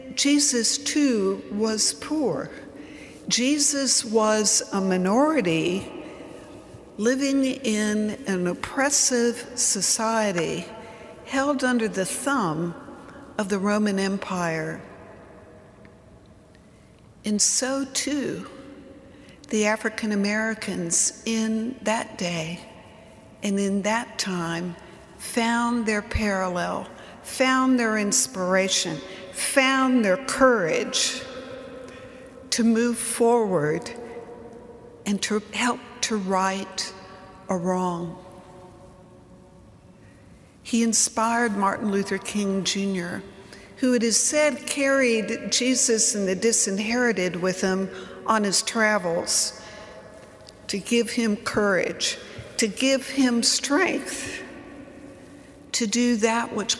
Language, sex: English, female